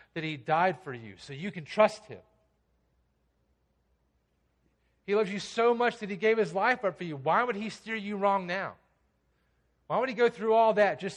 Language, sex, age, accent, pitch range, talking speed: English, male, 40-59, American, 170-230 Hz, 205 wpm